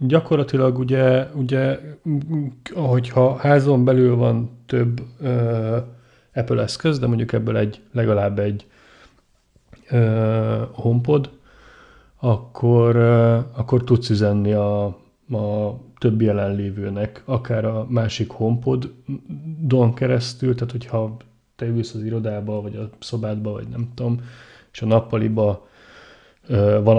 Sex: male